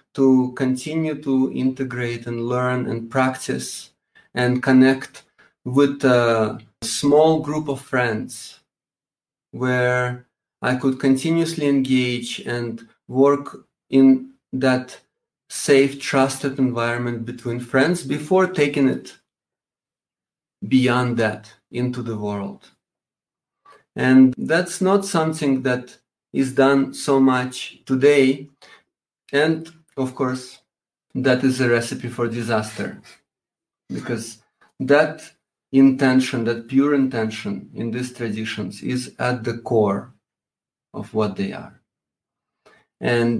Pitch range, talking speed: 120-135 Hz, 105 wpm